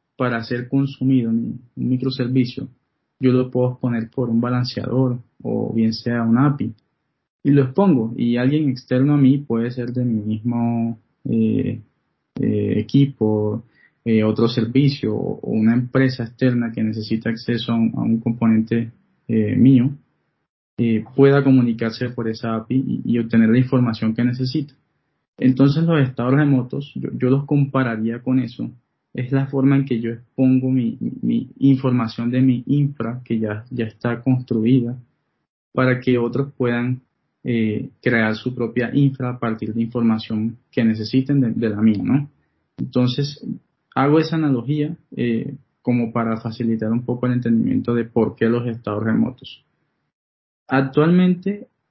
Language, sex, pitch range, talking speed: Spanish, male, 115-130 Hz, 150 wpm